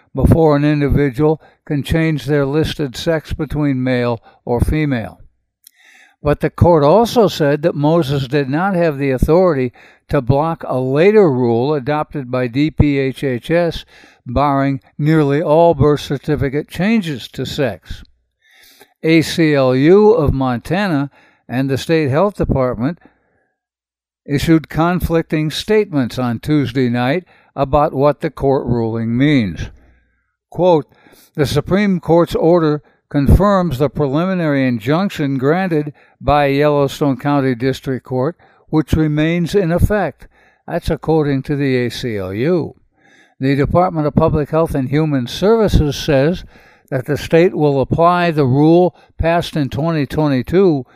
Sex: male